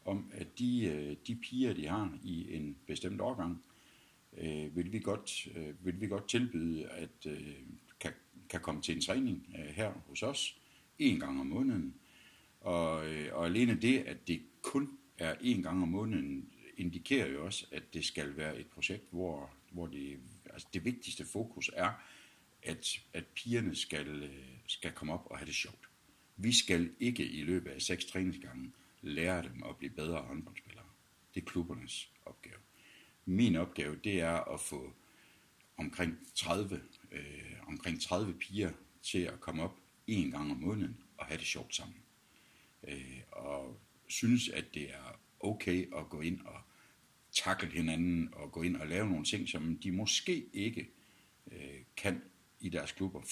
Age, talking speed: 60-79, 170 wpm